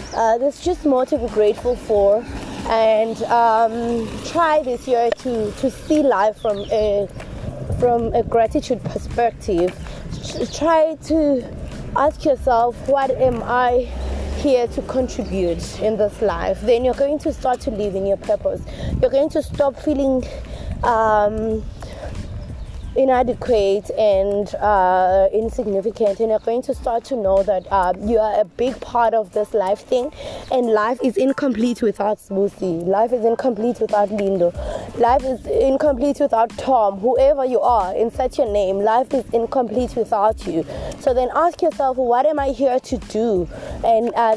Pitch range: 215-265 Hz